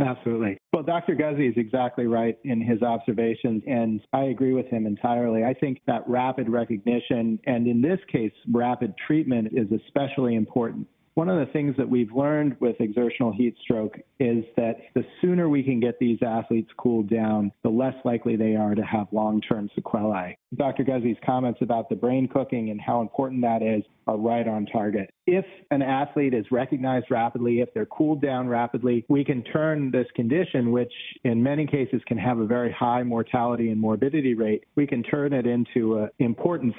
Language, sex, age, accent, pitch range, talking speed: English, male, 40-59, American, 115-135 Hz, 185 wpm